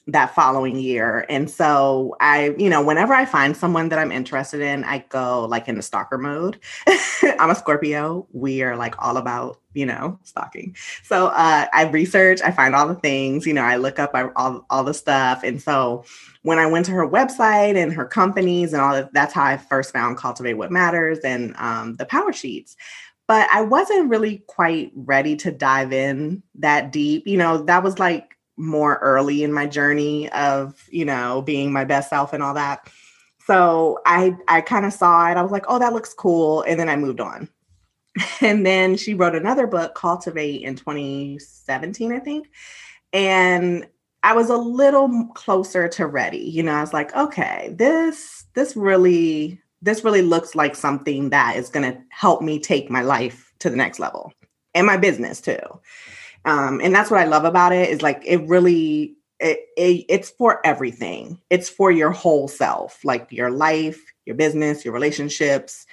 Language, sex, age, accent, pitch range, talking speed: English, female, 20-39, American, 135-180 Hz, 190 wpm